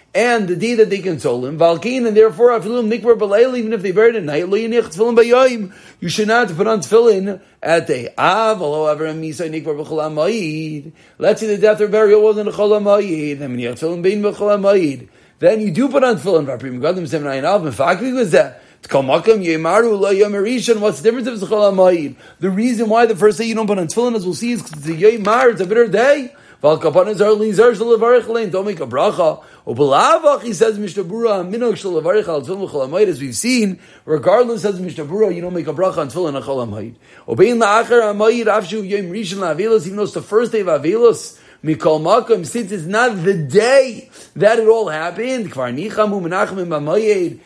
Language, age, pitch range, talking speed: English, 40-59, 175-225 Hz, 115 wpm